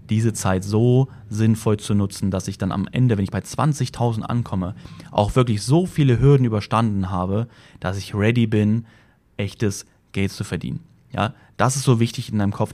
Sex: male